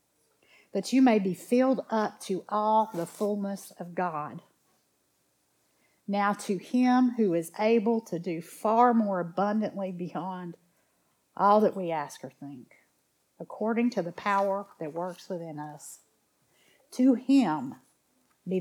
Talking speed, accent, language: 130 wpm, American, English